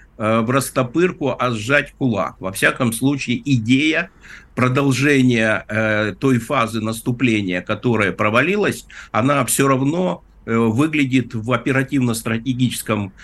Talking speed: 95 wpm